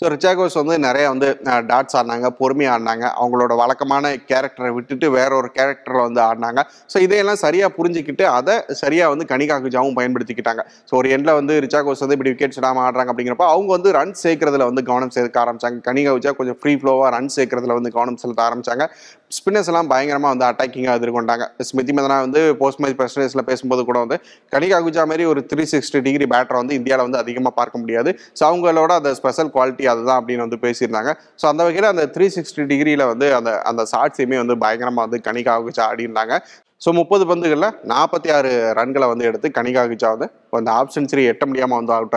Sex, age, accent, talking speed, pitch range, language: male, 30-49, native, 180 wpm, 120-145 Hz, Tamil